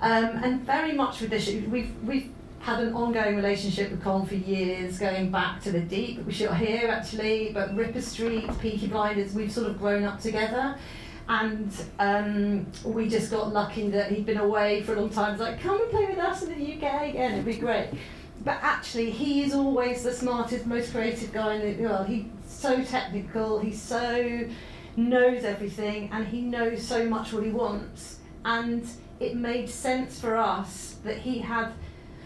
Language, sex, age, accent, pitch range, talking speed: English, female, 40-59, British, 210-245 Hz, 190 wpm